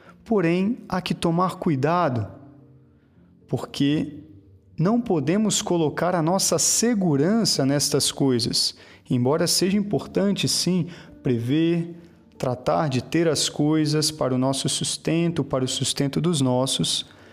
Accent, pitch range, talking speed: Brazilian, 140-175 Hz, 115 wpm